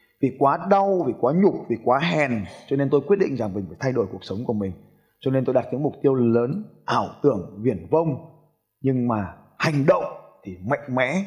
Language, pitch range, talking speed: Vietnamese, 115-150 Hz, 225 wpm